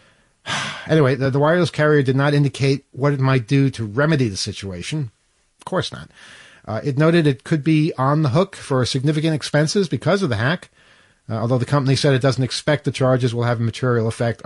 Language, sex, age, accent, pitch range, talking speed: English, male, 50-69, American, 115-155 Hz, 210 wpm